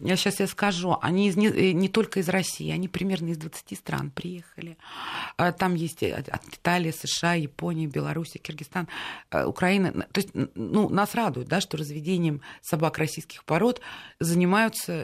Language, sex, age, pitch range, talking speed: Russian, female, 30-49, 155-190 Hz, 145 wpm